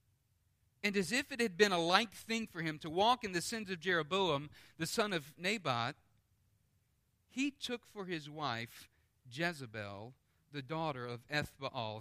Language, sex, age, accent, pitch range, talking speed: English, male, 40-59, American, 125-190 Hz, 160 wpm